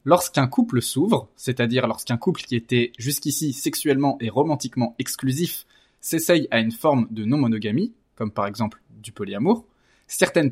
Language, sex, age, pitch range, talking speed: French, male, 20-39, 115-150 Hz, 145 wpm